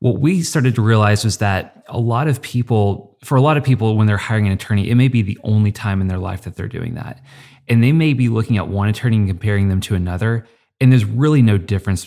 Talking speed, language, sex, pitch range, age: 260 wpm, English, male, 100-120 Hz, 30-49